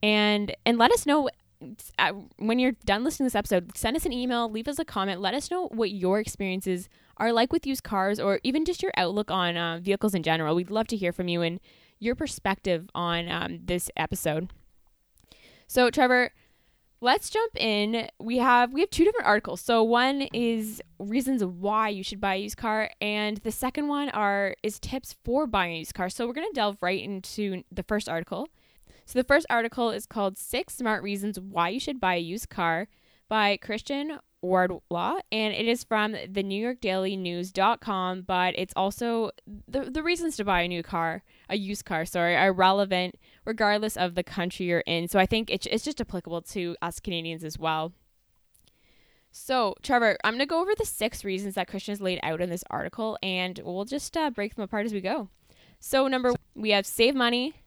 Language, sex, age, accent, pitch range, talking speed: English, female, 10-29, American, 185-240 Hz, 205 wpm